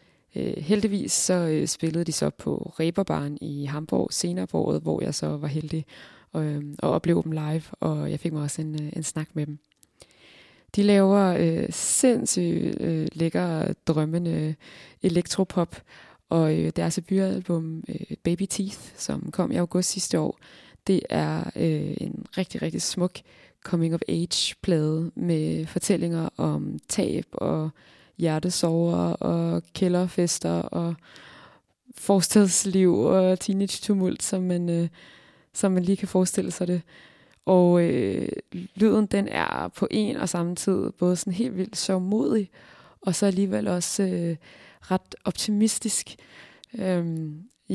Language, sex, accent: Danish, female, native